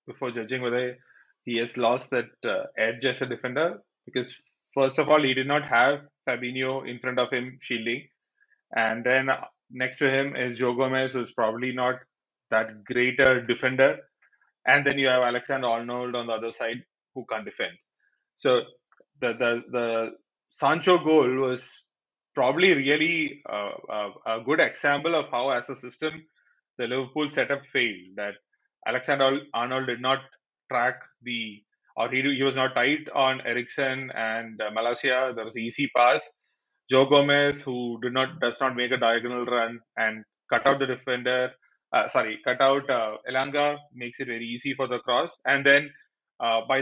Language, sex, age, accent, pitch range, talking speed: English, male, 20-39, Indian, 120-135 Hz, 170 wpm